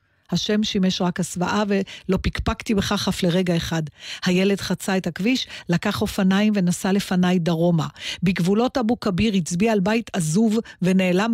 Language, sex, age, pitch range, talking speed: Hebrew, female, 50-69, 170-220 Hz, 145 wpm